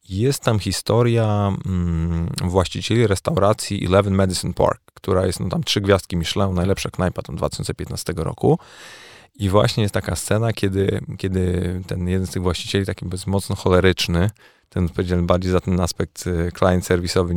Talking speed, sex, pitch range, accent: 150 wpm, male, 90-105 Hz, native